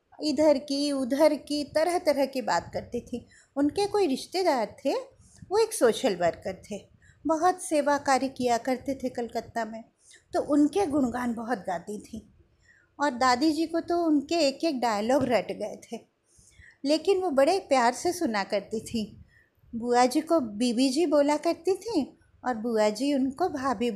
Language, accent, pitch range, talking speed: Hindi, native, 245-320 Hz, 165 wpm